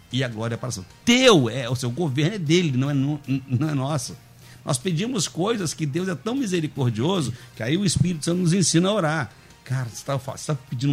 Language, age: Portuguese, 60-79